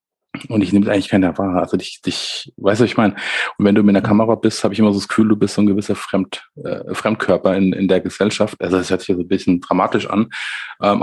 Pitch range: 95-100 Hz